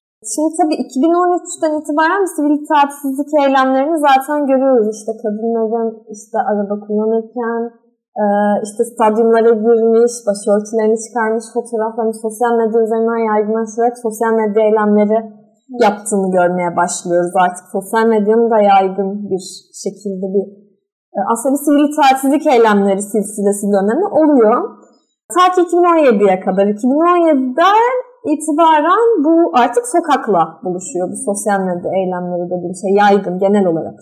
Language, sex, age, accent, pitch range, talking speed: Turkish, female, 30-49, native, 215-295 Hz, 110 wpm